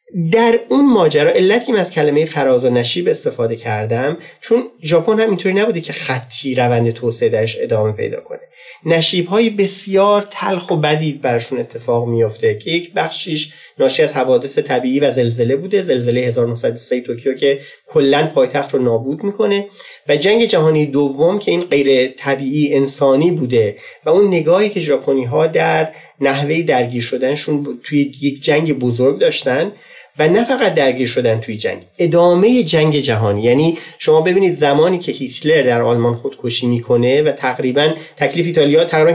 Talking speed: 150 wpm